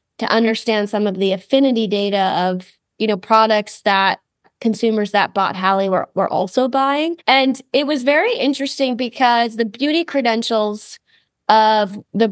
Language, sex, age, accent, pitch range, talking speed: English, female, 20-39, American, 195-235 Hz, 150 wpm